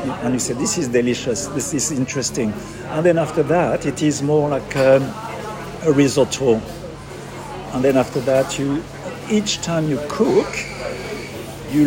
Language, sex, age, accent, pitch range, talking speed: English, male, 50-69, French, 125-160 Hz, 150 wpm